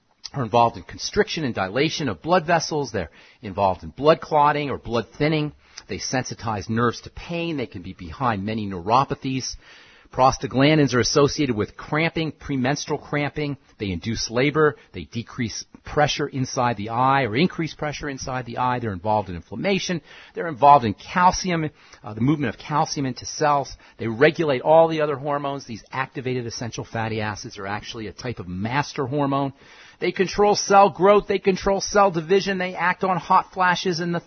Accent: American